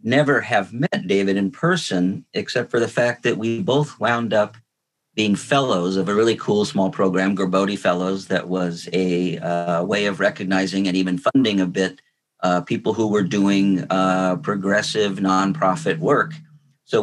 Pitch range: 95-110 Hz